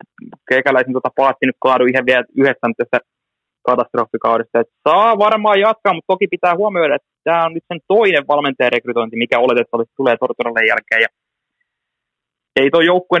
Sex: male